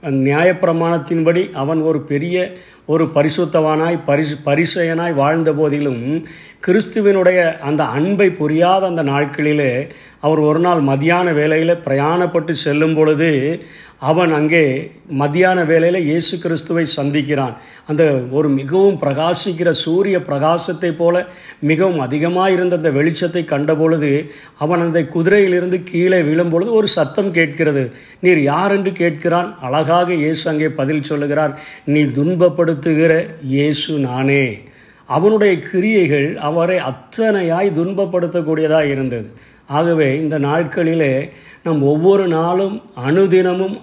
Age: 50-69